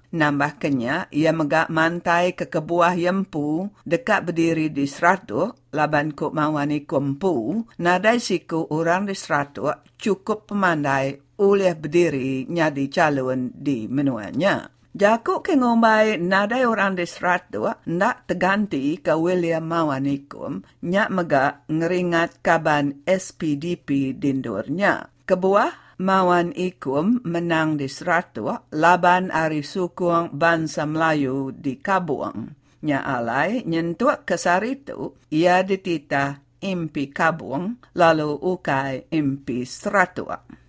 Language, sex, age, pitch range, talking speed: English, female, 50-69, 150-190 Hz, 105 wpm